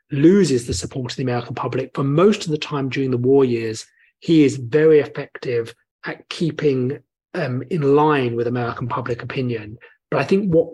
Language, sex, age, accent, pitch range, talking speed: English, male, 30-49, British, 125-150 Hz, 185 wpm